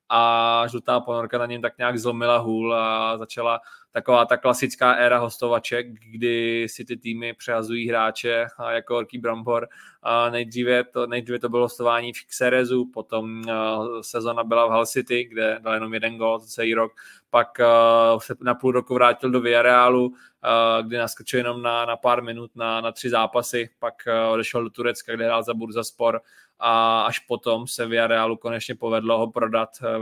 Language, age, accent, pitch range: Czech, 20-39, native, 115-120 Hz